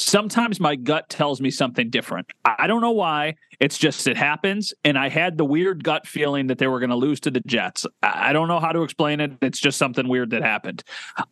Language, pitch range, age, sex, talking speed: English, 140-195 Hz, 30-49, male, 235 wpm